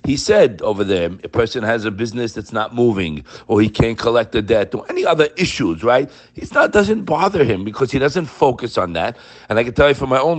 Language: English